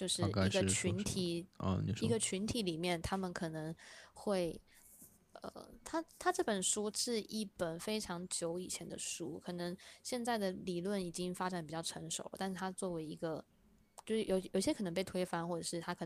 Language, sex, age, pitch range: Chinese, female, 20-39, 165-195 Hz